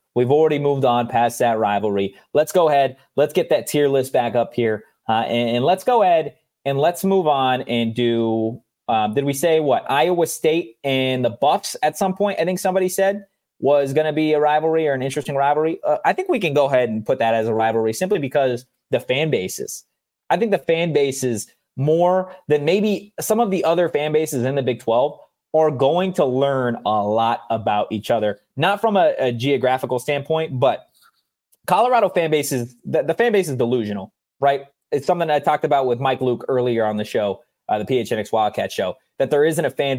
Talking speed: 210 wpm